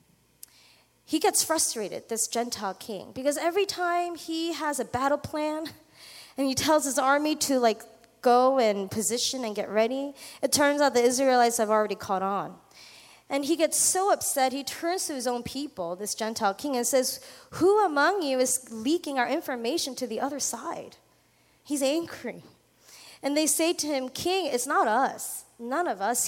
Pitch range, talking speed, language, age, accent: 225-300 Hz, 175 wpm, English, 20-39, American